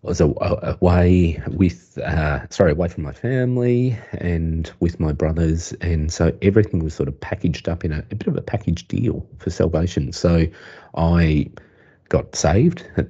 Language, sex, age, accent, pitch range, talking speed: English, male, 30-49, Australian, 75-100 Hz, 170 wpm